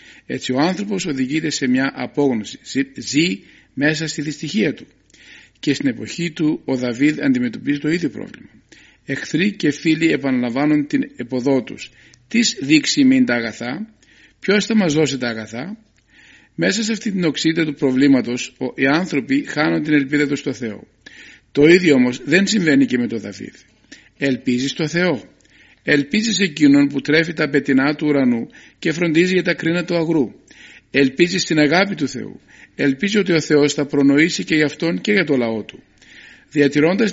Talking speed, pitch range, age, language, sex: 165 wpm, 135-175 Hz, 50-69, Greek, male